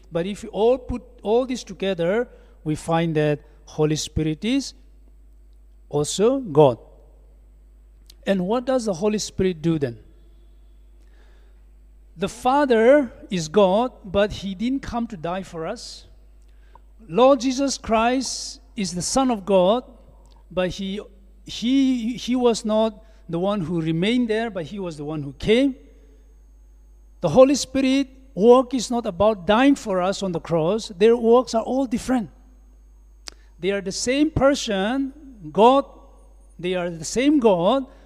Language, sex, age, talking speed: English, male, 60-79, 140 wpm